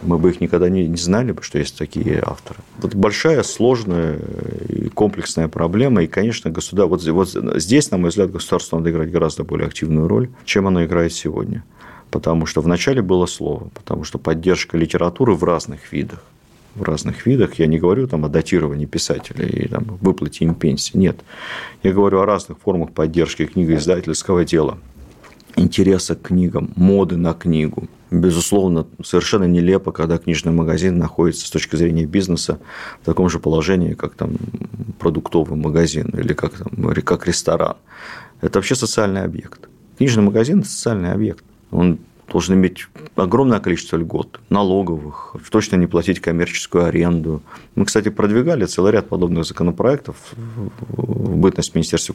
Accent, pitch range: native, 80-100 Hz